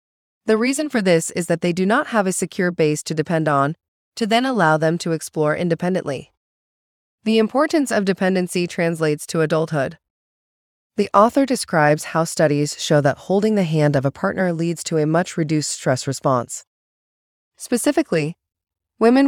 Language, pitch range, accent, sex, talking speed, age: English, 150-190 Hz, American, female, 160 wpm, 20-39